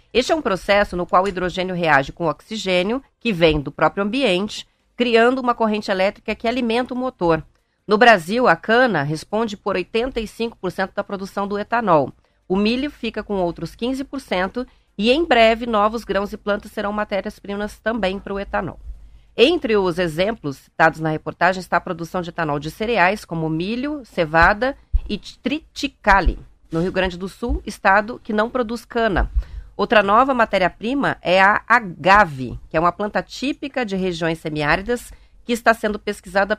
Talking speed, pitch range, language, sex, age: 165 wpm, 170-230 Hz, Portuguese, female, 40-59